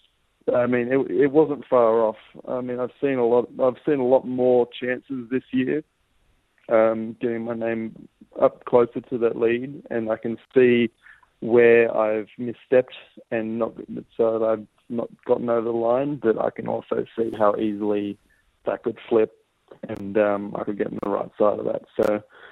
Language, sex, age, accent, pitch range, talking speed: English, male, 20-39, Australian, 105-120 Hz, 185 wpm